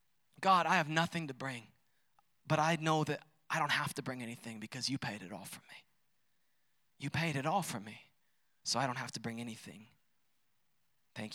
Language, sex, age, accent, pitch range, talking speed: English, male, 20-39, American, 140-215 Hz, 195 wpm